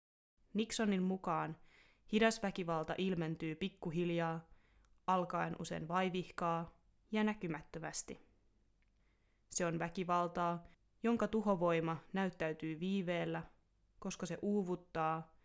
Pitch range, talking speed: 165-195 Hz, 80 wpm